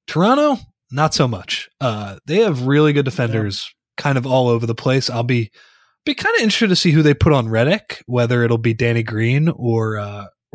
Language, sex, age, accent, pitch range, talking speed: English, male, 20-39, American, 115-145 Hz, 205 wpm